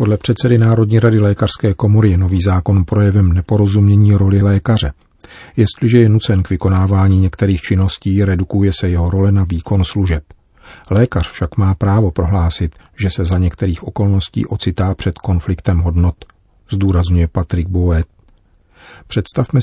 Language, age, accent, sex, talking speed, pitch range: Czech, 40-59, native, male, 140 wpm, 90-105 Hz